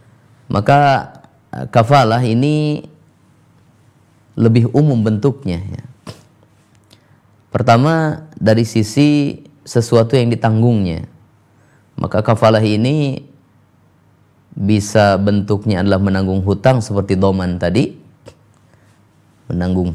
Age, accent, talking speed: 20-39, native, 70 wpm